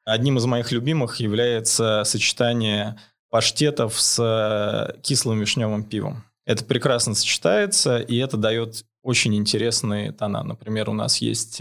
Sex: male